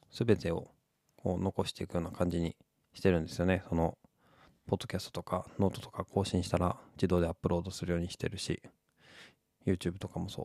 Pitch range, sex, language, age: 90-115 Hz, male, Japanese, 20-39